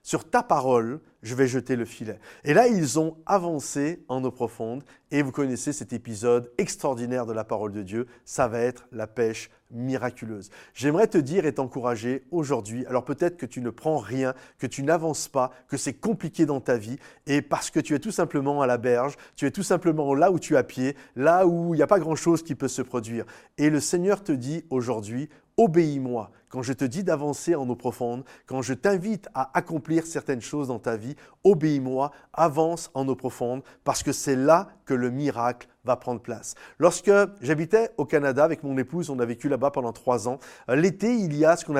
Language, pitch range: French, 125-165 Hz